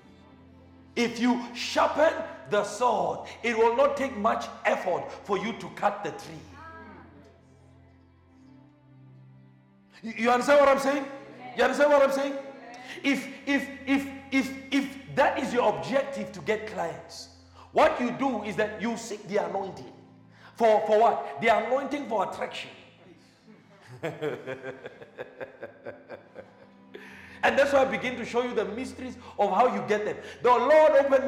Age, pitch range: 50-69, 190-275 Hz